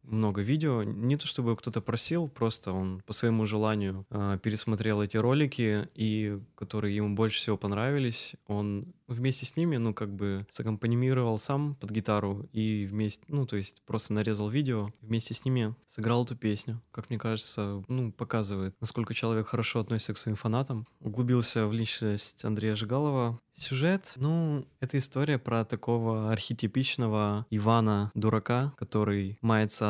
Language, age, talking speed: Russian, 20-39, 150 wpm